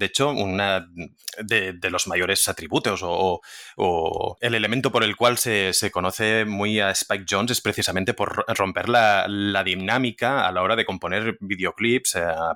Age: 30-49